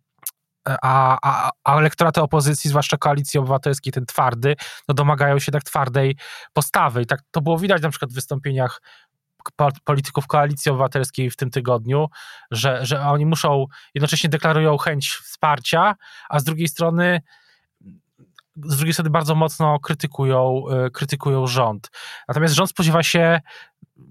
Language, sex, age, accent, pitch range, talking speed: Polish, male, 20-39, native, 125-150 Hz, 140 wpm